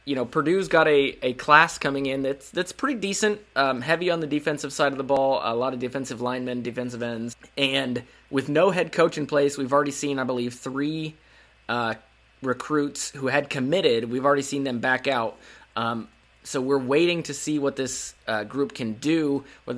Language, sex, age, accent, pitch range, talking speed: English, male, 20-39, American, 125-145 Hz, 200 wpm